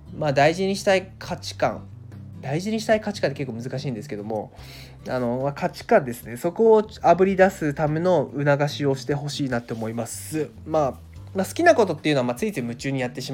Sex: male